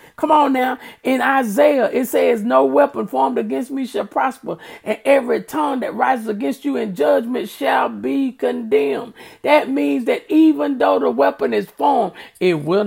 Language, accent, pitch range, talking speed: English, American, 170-280 Hz, 175 wpm